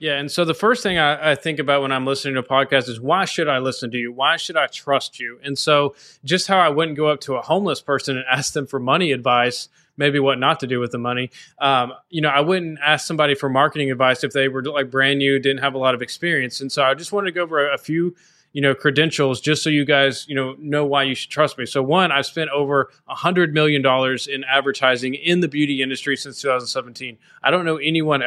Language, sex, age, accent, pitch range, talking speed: English, male, 20-39, American, 130-150 Hz, 260 wpm